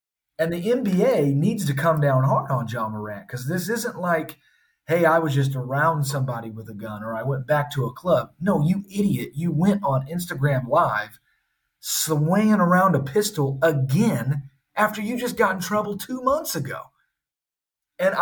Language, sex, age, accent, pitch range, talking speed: English, male, 30-49, American, 135-180 Hz, 180 wpm